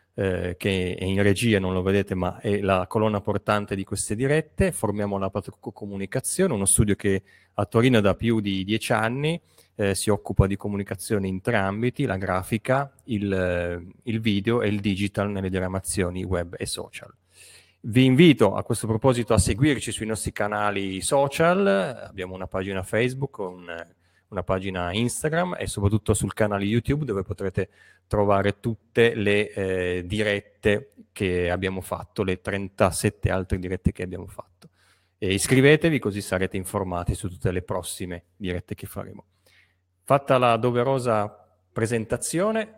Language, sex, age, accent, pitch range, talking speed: Italian, male, 30-49, native, 95-115 Hz, 145 wpm